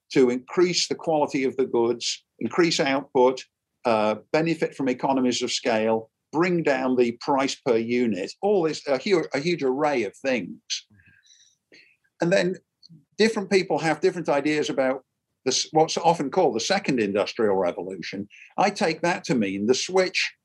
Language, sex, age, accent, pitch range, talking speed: English, male, 50-69, British, 125-155 Hz, 150 wpm